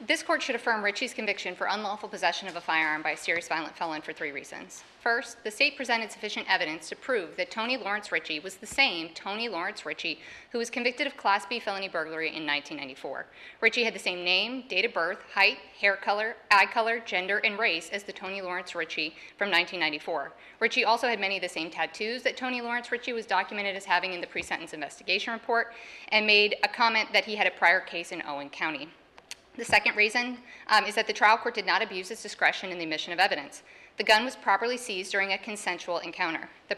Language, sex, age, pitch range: English, female, 30-49, 185-230 Hz